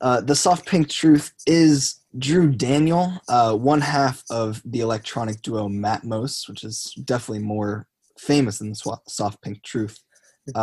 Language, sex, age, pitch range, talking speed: English, male, 20-39, 110-135 Hz, 150 wpm